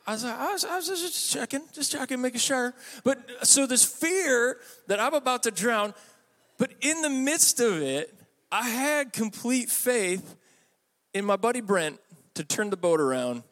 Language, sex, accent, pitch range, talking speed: English, male, American, 140-220 Hz, 180 wpm